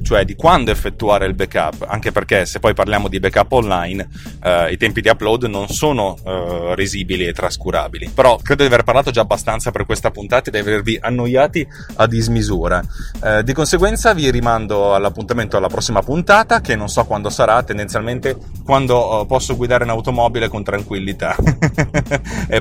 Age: 30-49